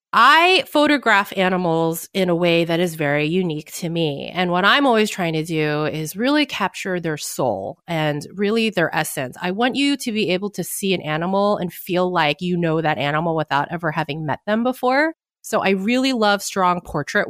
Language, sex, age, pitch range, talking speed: English, female, 30-49, 165-215 Hz, 200 wpm